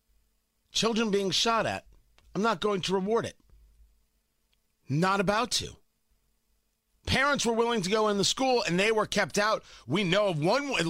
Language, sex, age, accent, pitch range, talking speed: English, male, 50-69, American, 145-220 Hz, 165 wpm